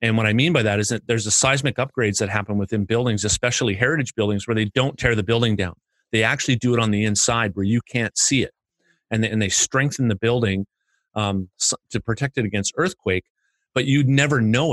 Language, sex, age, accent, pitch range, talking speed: English, male, 30-49, American, 105-125 Hz, 225 wpm